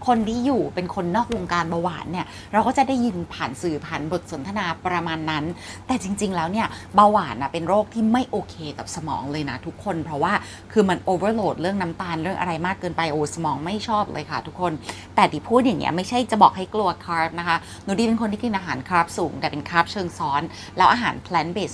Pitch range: 165-215 Hz